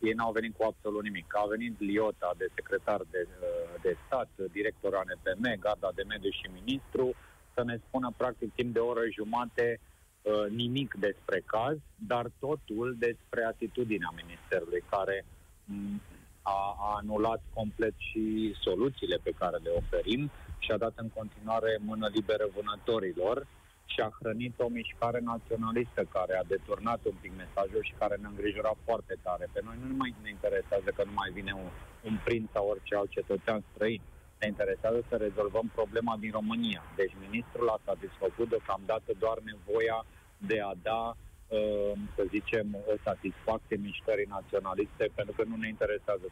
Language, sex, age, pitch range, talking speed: Romanian, male, 30-49, 105-135 Hz, 155 wpm